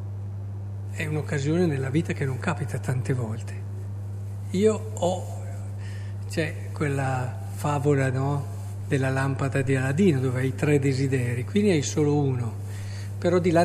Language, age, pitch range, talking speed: Italian, 50-69, 100-150 Hz, 135 wpm